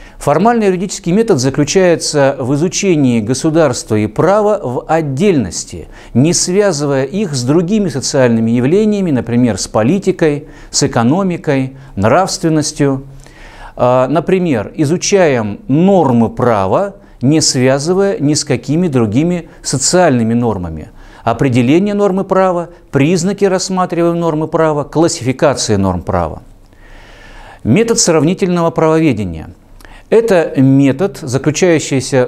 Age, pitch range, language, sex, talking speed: 50-69, 120-175 Hz, Russian, male, 95 wpm